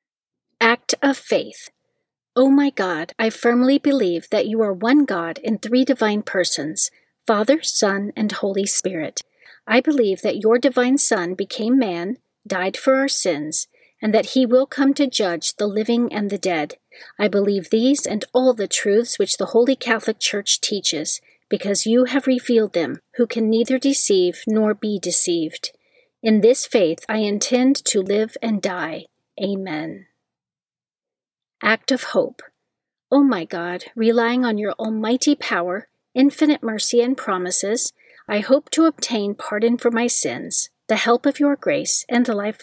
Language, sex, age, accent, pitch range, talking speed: English, female, 40-59, American, 200-260 Hz, 160 wpm